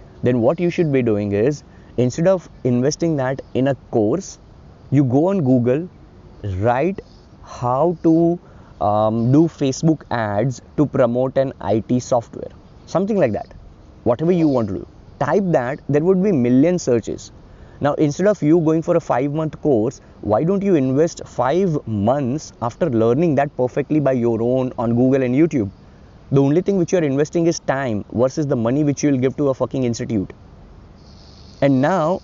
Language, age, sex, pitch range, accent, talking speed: English, 20-39, male, 115-160 Hz, Indian, 175 wpm